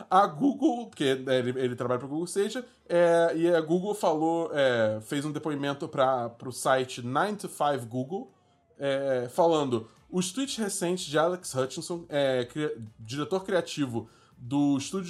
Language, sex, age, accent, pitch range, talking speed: Portuguese, male, 20-39, Brazilian, 130-180 Hz, 150 wpm